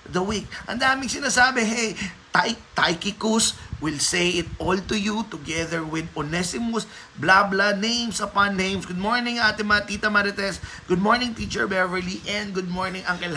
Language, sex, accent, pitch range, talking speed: Filipino, male, native, 160-230 Hz, 160 wpm